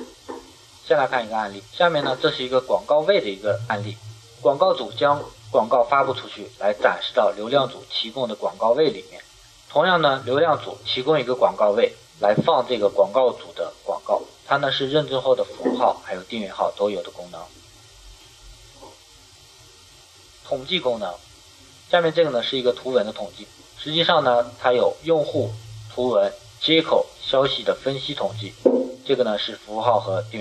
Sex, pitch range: male, 105-140 Hz